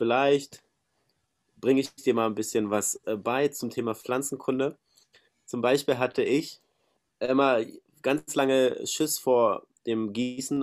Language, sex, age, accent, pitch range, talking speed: German, male, 30-49, German, 115-145 Hz, 130 wpm